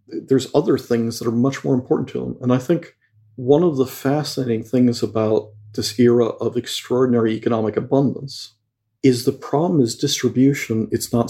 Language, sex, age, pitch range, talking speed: English, male, 50-69, 115-135 Hz, 170 wpm